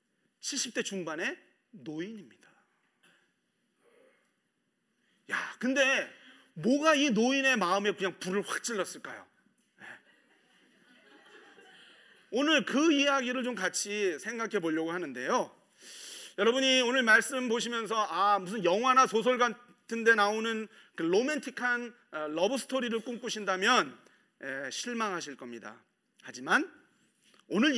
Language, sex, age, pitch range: Korean, male, 30-49, 200-270 Hz